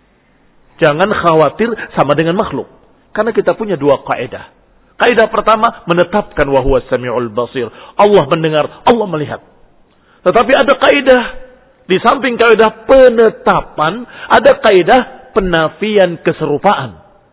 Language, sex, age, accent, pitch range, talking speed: Indonesian, male, 50-69, native, 145-220 Hz, 100 wpm